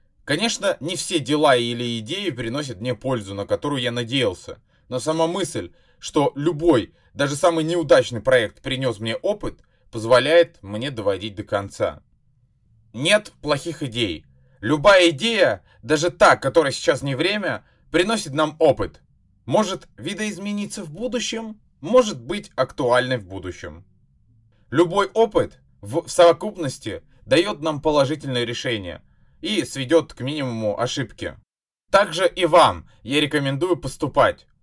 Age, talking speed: 20-39, 125 wpm